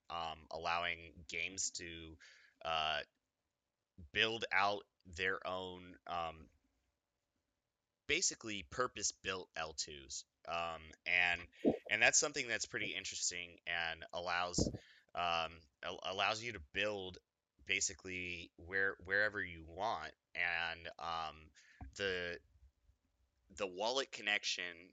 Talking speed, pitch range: 95 wpm, 80-95 Hz